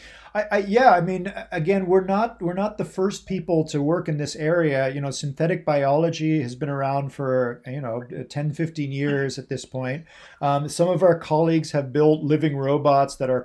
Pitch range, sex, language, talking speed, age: 130-160 Hz, male, English, 200 wpm, 40-59